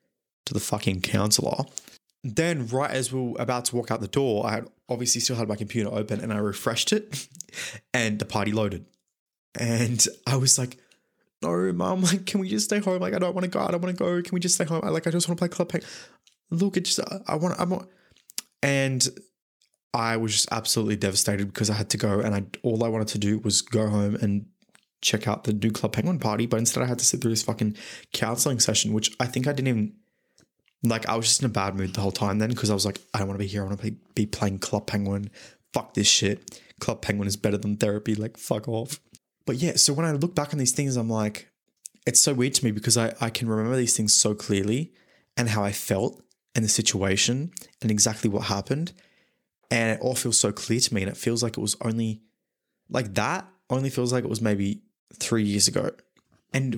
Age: 20-39